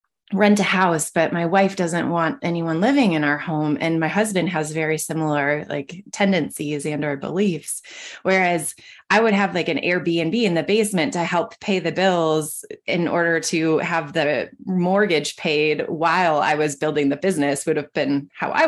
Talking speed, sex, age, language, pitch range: 185 wpm, female, 20-39, English, 155-185 Hz